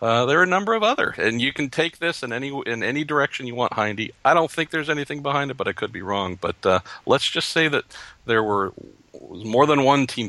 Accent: American